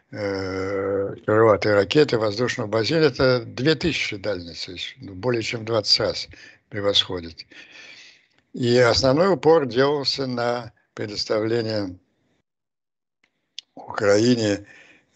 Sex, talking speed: male, 75 wpm